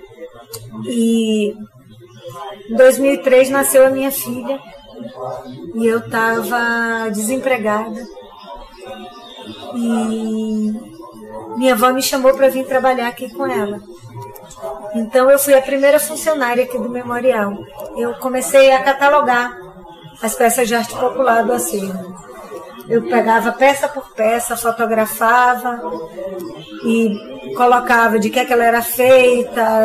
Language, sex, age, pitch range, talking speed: Portuguese, female, 20-39, 215-260 Hz, 115 wpm